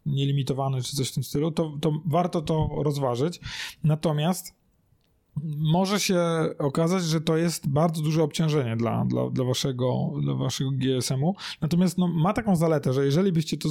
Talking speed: 145 wpm